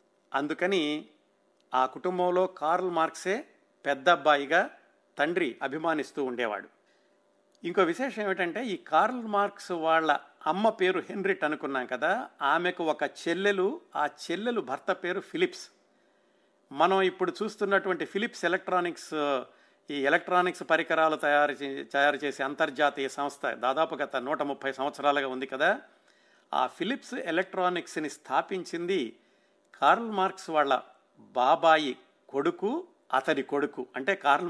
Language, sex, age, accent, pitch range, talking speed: Telugu, male, 50-69, native, 145-190 Hz, 110 wpm